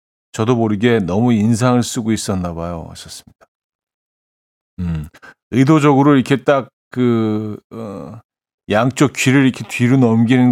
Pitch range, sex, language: 95-125 Hz, male, Korean